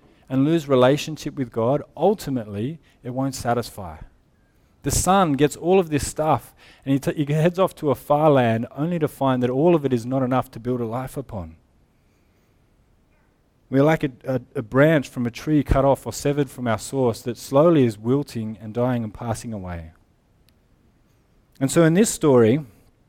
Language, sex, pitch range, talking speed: English, male, 120-155 Hz, 185 wpm